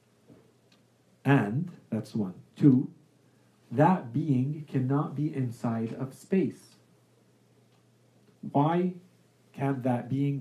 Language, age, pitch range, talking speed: English, 50-69, 120-155 Hz, 85 wpm